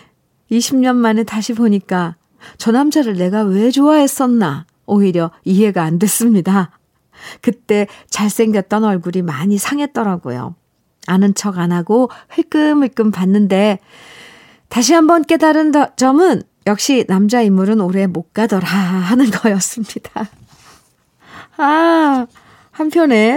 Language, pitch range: Korean, 180-245 Hz